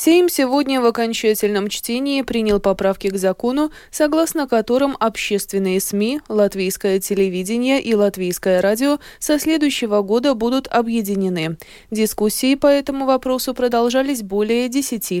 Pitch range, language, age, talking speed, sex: 190-235 Hz, Russian, 20-39, 120 wpm, female